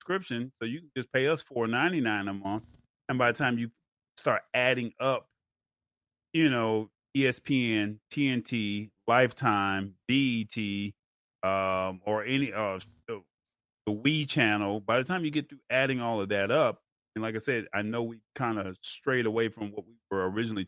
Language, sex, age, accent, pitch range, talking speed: English, male, 30-49, American, 105-135 Hz, 170 wpm